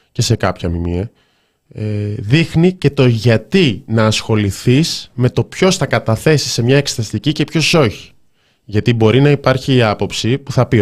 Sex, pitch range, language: male, 100-135 Hz, Greek